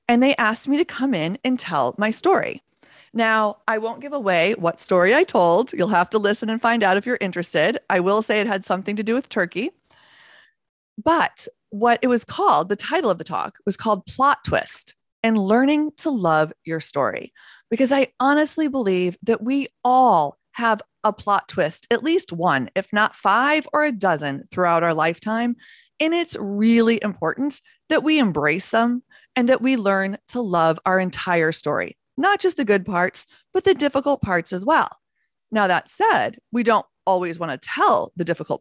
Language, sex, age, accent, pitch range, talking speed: English, female, 30-49, American, 185-265 Hz, 190 wpm